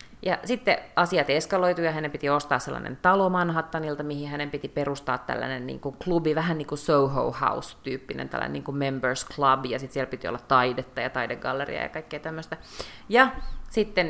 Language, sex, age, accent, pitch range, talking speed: Finnish, female, 30-49, native, 145-200 Hz, 180 wpm